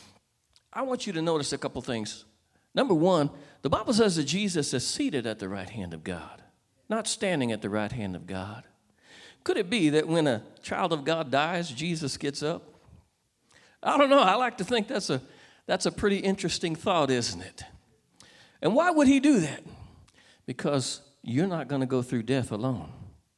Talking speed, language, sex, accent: 195 wpm, English, male, American